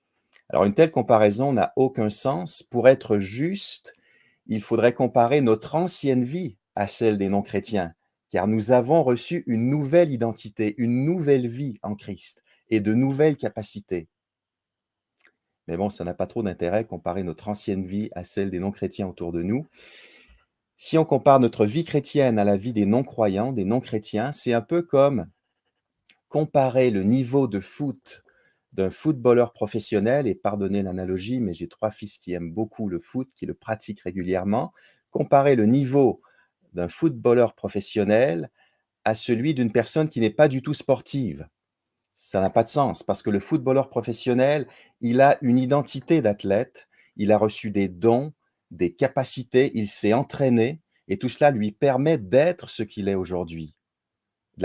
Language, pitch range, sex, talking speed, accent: French, 100-135 Hz, male, 160 wpm, French